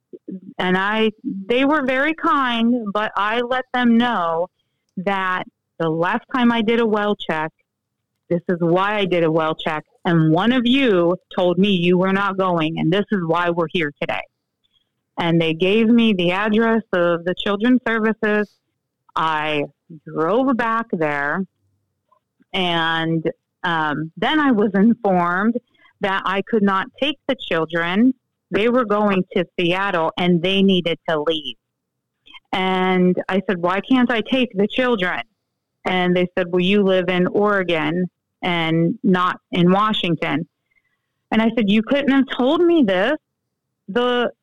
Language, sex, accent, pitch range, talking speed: English, female, American, 175-245 Hz, 155 wpm